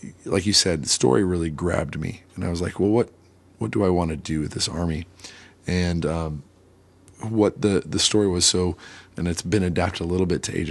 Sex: male